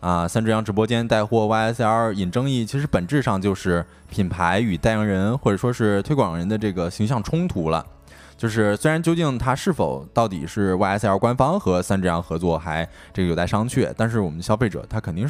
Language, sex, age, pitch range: Chinese, male, 20-39, 95-125 Hz